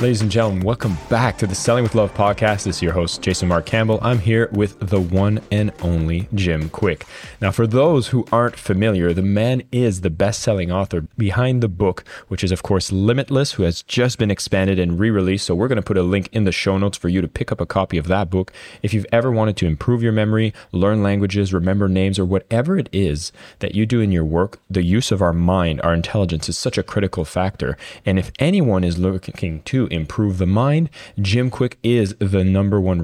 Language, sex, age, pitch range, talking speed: English, male, 20-39, 90-110 Hz, 225 wpm